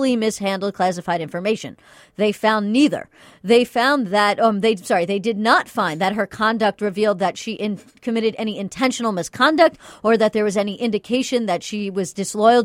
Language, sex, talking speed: English, female, 175 wpm